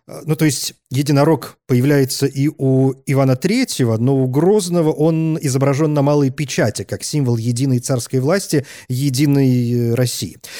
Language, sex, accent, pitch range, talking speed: Russian, male, native, 130-160 Hz, 135 wpm